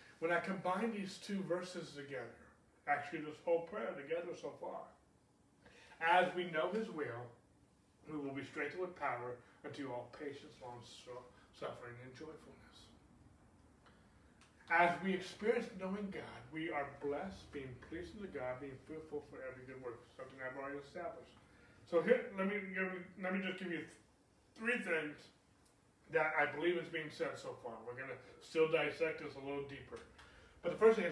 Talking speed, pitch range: 170 wpm, 125-180 Hz